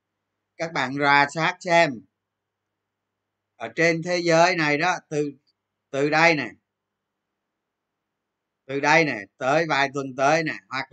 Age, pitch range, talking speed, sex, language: 20-39, 120-175 Hz, 130 wpm, male, Vietnamese